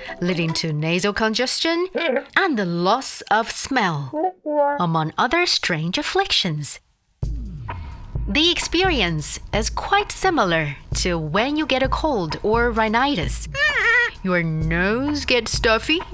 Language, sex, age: English, female, 30-49